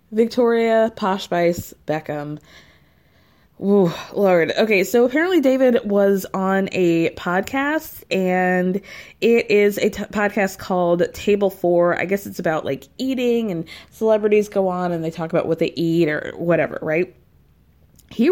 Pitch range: 170-220 Hz